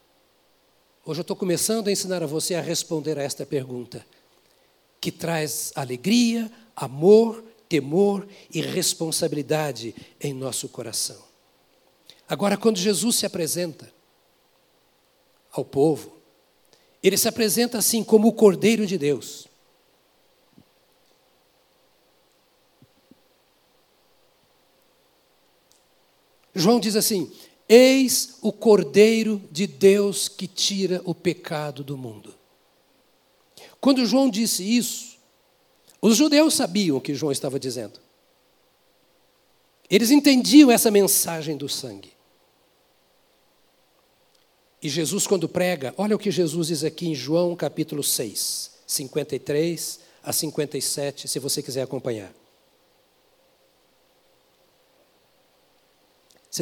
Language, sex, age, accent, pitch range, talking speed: Portuguese, male, 60-79, Brazilian, 150-215 Hz, 100 wpm